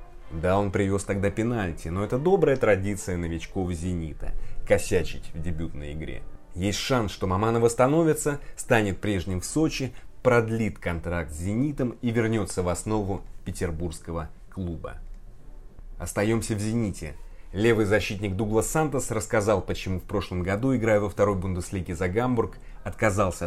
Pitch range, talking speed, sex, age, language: 90-115 Hz, 135 wpm, male, 30-49, Russian